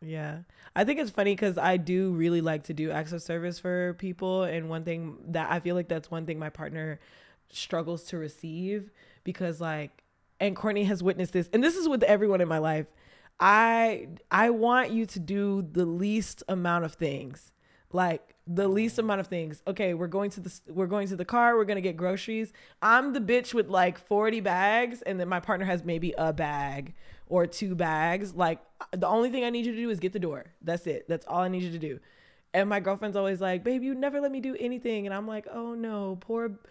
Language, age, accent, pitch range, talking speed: English, 20-39, American, 180-245 Hz, 220 wpm